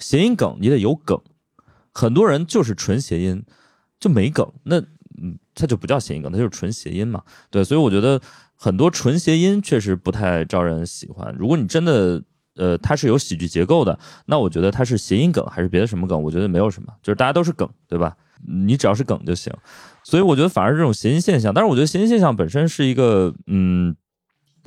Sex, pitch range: male, 95-145 Hz